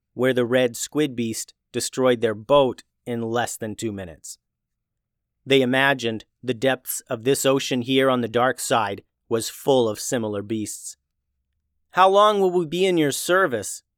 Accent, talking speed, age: American, 165 wpm, 30-49